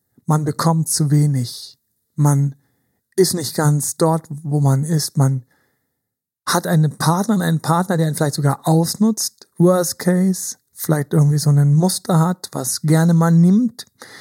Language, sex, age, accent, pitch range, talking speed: German, male, 50-69, German, 140-165 Hz, 150 wpm